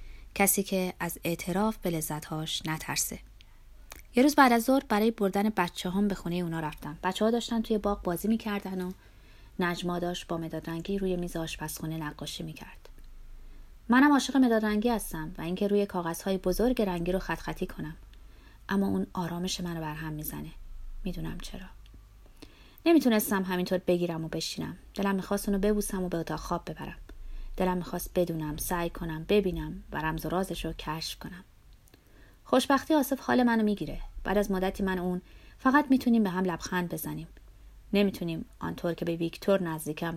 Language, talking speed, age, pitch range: Persian, 170 wpm, 30-49, 160-200 Hz